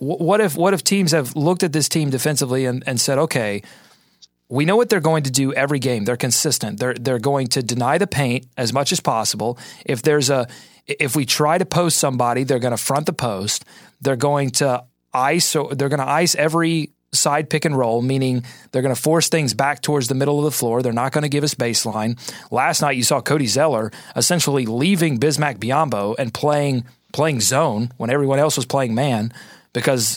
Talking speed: 205 wpm